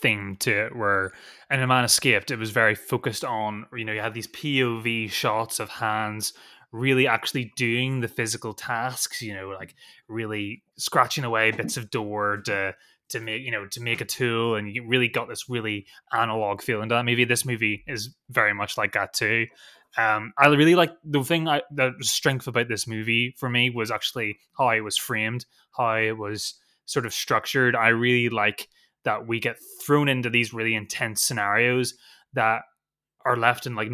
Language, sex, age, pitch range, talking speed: English, male, 20-39, 105-125 Hz, 190 wpm